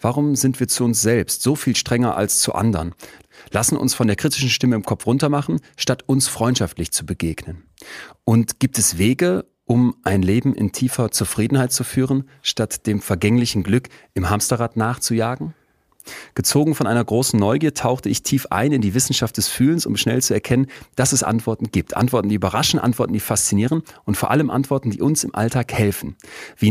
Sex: male